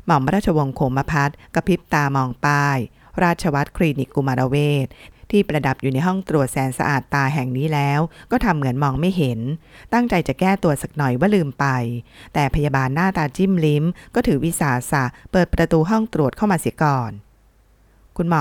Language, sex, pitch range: Thai, female, 135-175 Hz